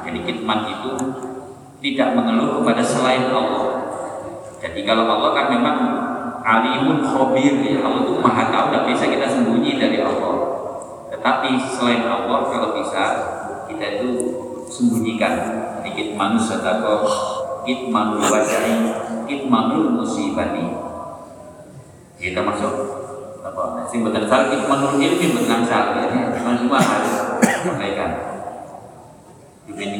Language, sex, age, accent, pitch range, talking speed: Indonesian, male, 40-59, native, 105-125 Hz, 110 wpm